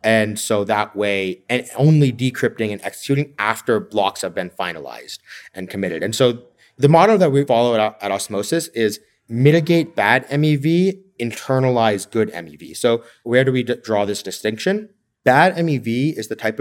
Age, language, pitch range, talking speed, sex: 30-49, English, 110-145 Hz, 165 wpm, male